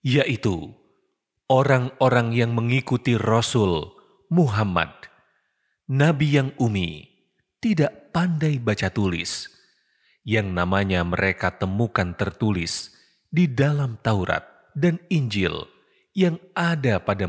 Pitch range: 105-155 Hz